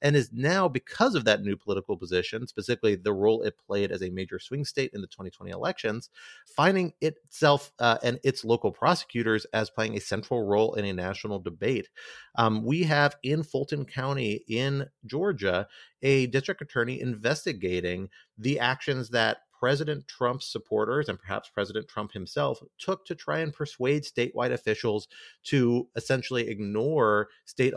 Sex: male